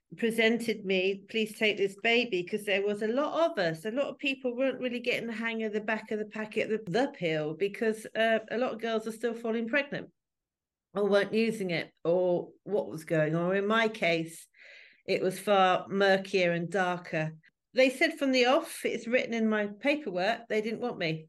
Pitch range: 195-235 Hz